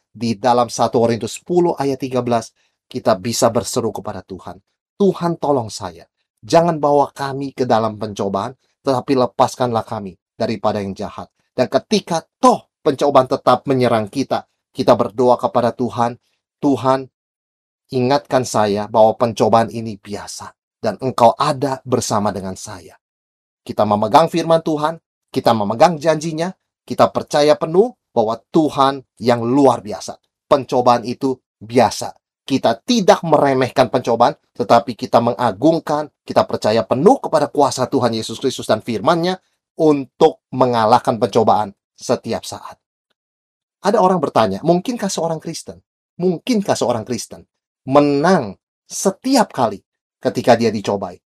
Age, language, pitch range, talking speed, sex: 30-49, Indonesian, 115-155 Hz, 125 wpm, male